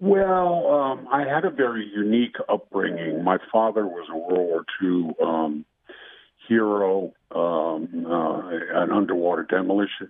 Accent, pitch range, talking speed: American, 90-115 Hz, 130 wpm